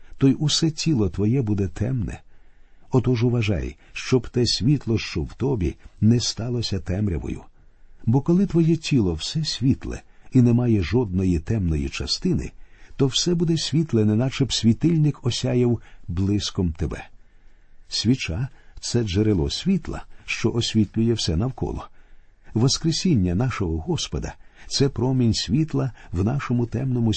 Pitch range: 95-130 Hz